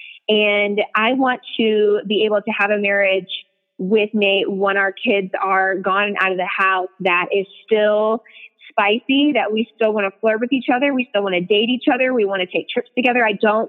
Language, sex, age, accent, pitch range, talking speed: English, female, 20-39, American, 185-210 Hz, 220 wpm